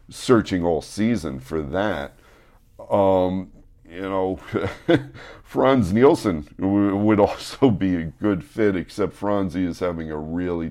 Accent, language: American, English